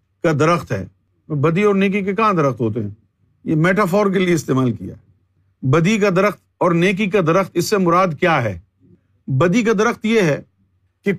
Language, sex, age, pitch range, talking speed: Urdu, male, 50-69, 120-200 Hz, 190 wpm